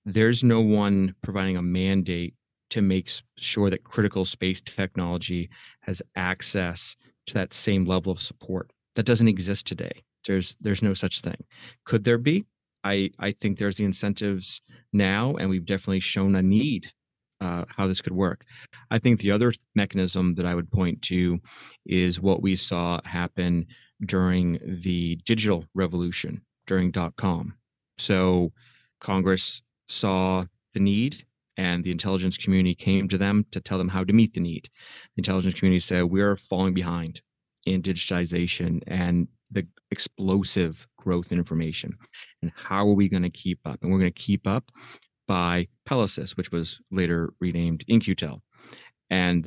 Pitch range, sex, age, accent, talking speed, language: 90-105 Hz, male, 30-49, American, 160 wpm, English